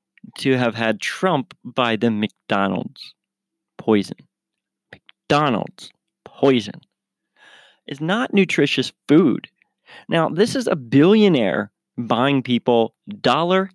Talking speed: 95 wpm